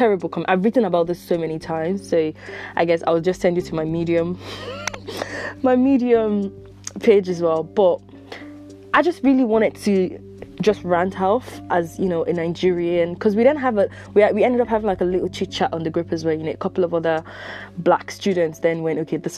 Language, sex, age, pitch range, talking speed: English, female, 20-39, 160-205 Hz, 215 wpm